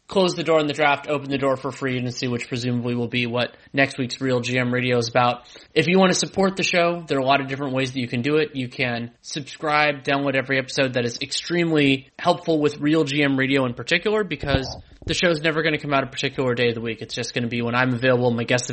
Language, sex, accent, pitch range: English, male, American, 125-150 Hz